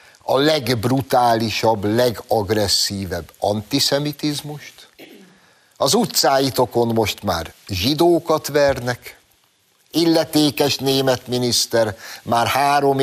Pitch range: 110-155 Hz